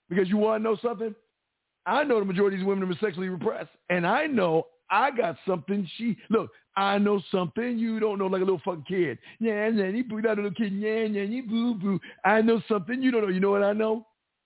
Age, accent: 50-69, American